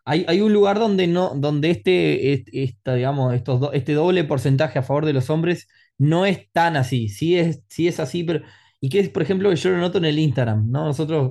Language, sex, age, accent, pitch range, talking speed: Spanish, male, 20-39, Argentinian, 125-165 Hz, 240 wpm